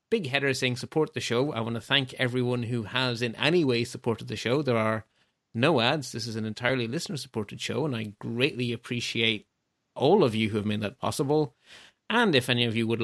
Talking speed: 215 wpm